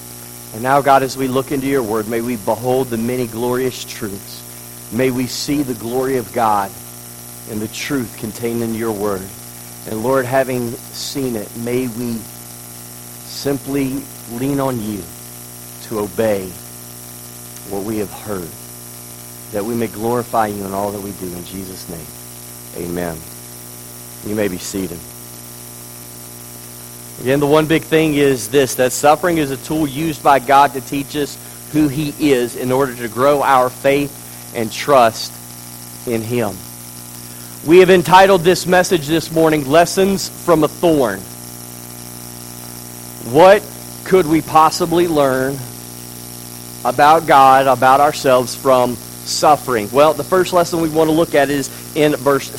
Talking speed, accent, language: 150 wpm, American, English